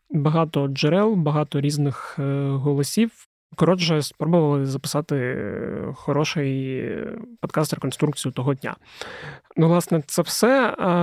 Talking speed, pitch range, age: 90 wpm, 140-160 Hz, 30-49